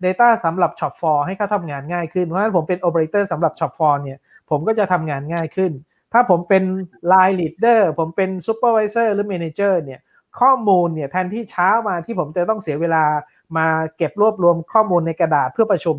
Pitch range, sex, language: 155-195 Hz, male, Thai